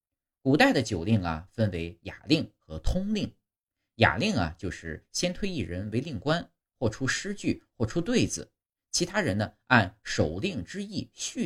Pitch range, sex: 85-125 Hz, male